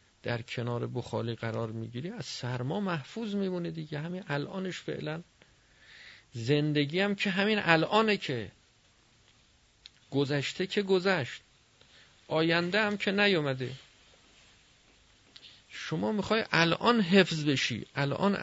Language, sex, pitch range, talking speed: Persian, male, 115-165 Hz, 105 wpm